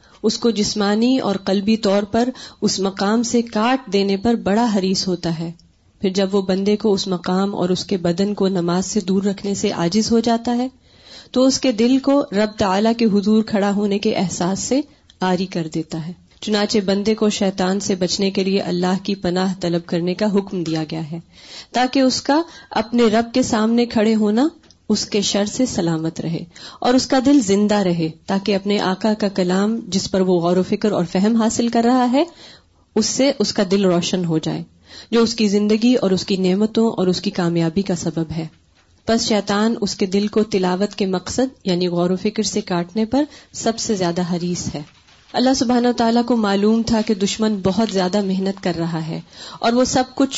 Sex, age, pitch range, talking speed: female, 30-49, 185-230 Hz, 205 wpm